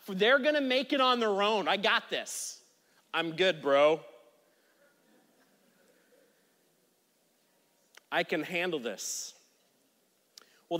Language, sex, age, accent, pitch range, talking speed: English, male, 30-49, American, 155-205 Hz, 100 wpm